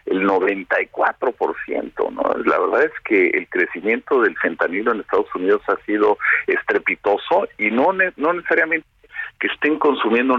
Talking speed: 145 wpm